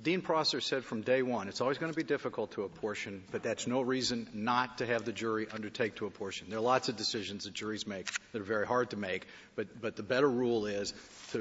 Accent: American